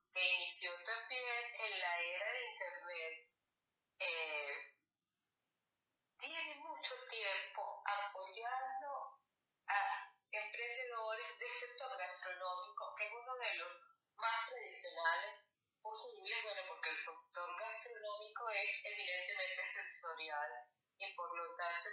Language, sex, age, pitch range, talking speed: Spanish, female, 30-49, 165-240 Hz, 105 wpm